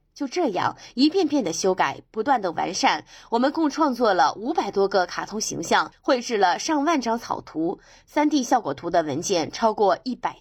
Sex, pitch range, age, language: female, 205-300 Hz, 20-39, Chinese